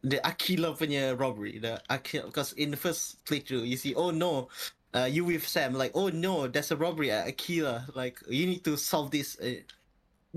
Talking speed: 210 wpm